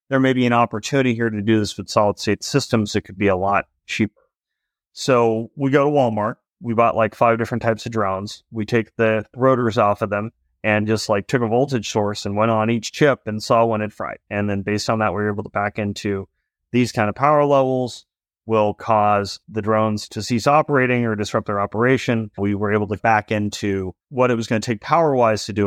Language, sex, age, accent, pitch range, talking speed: English, male, 30-49, American, 105-125 Hz, 225 wpm